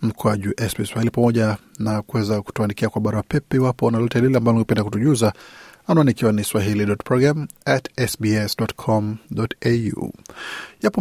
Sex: male